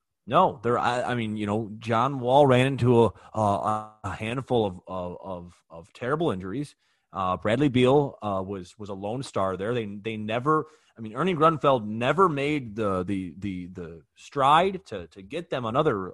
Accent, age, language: American, 30-49, English